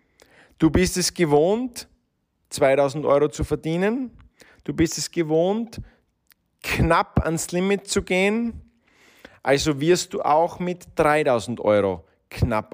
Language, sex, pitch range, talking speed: German, male, 120-170 Hz, 120 wpm